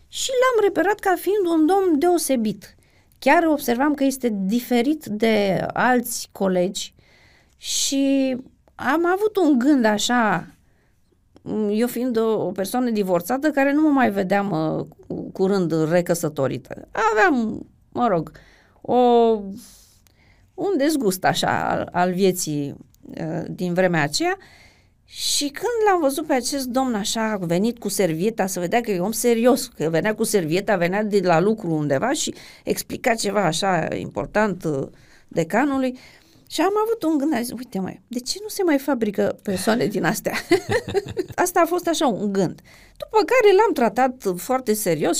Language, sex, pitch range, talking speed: Romanian, female, 190-290 Hz, 145 wpm